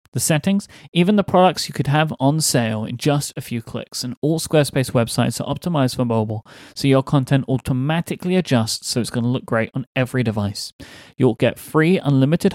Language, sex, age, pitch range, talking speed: English, male, 30-49, 125-160 Hz, 195 wpm